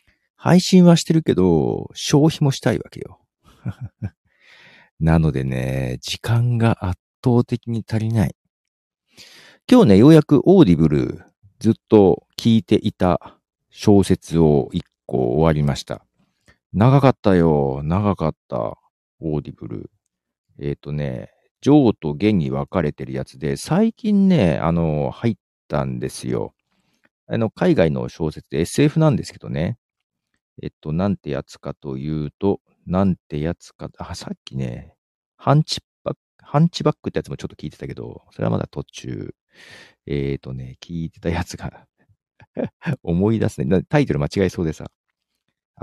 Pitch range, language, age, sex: 75-115 Hz, Japanese, 50-69, male